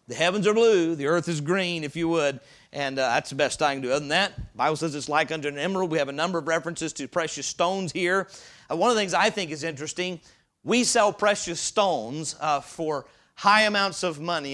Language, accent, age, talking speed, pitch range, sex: English, American, 40-59, 245 wpm, 145-185 Hz, male